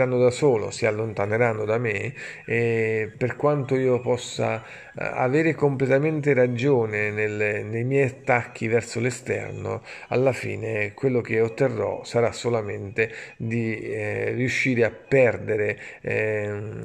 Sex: male